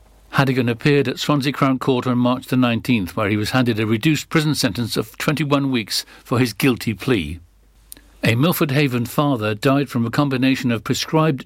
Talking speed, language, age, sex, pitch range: 185 wpm, English, 60-79, male, 110-135 Hz